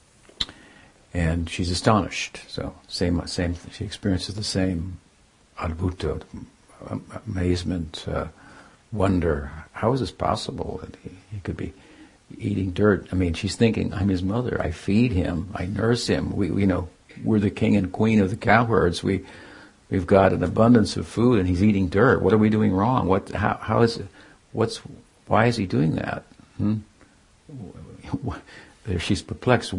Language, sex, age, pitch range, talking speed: English, male, 60-79, 90-110 Hz, 160 wpm